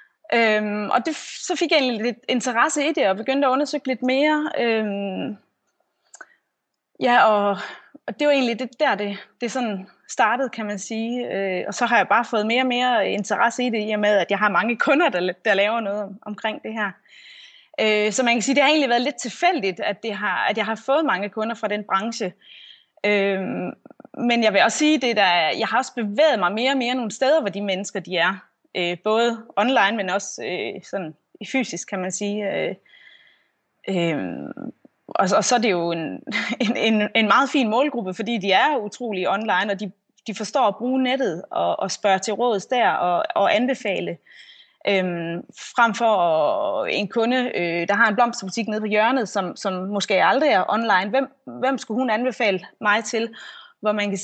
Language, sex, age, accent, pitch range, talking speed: Danish, female, 20-39, native, 200-255 Hz, 195 wpm